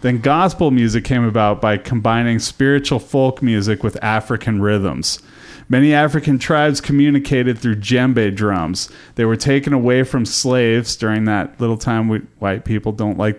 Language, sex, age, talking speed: English, male, 30-49, 150 wpm